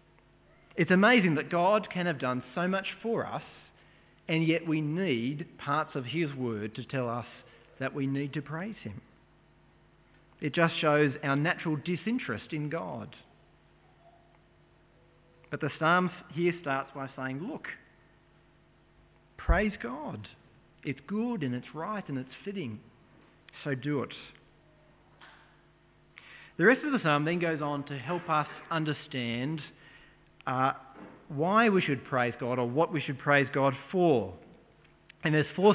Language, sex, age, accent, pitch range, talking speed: English, male, 40-59, Australian, 135-175 Hz, 145 wpm